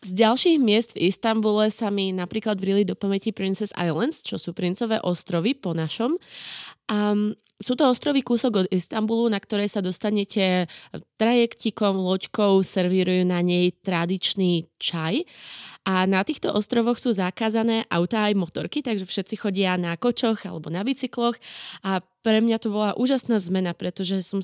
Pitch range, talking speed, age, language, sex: 185-220 Hz, 155 wpm, 20-39, Slovak, female